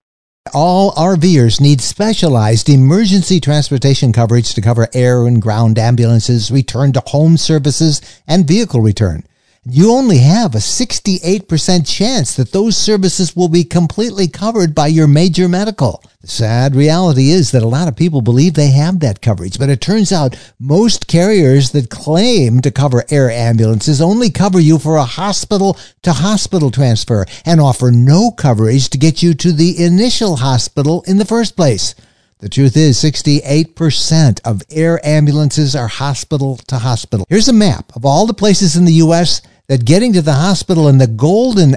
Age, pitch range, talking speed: 60-79, 120-170 Hz, 160 wpm